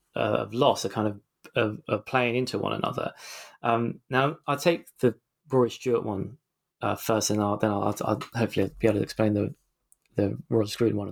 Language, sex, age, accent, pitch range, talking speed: English, male, 20-39, British, 105-125 Hz, 190 wpm